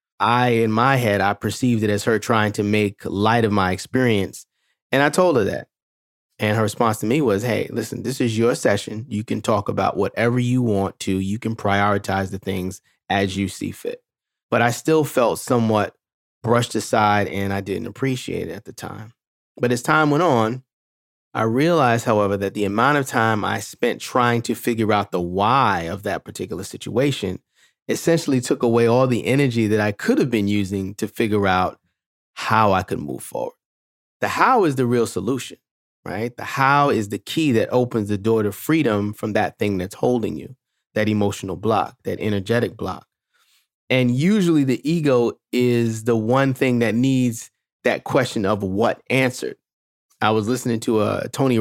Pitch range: 100-125 Hz